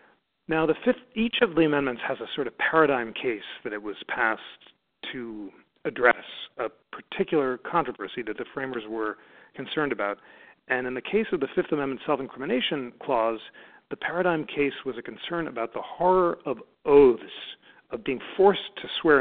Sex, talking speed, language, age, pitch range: male, 160 wpm, English, 40-59, 125-180 Hz